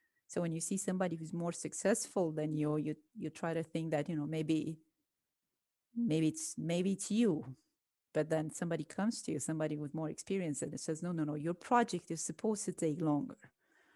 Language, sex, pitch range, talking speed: English, female, 160-205 Hz, 200 wpm